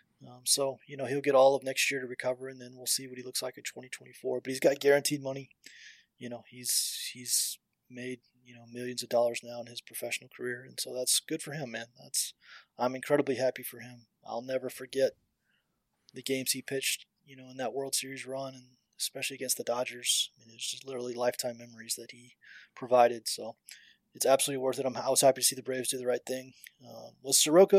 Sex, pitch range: male, 120-130 Hz